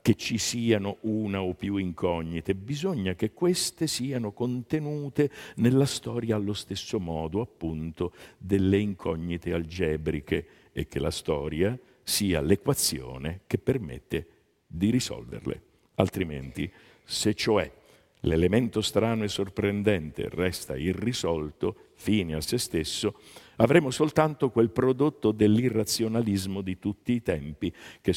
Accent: native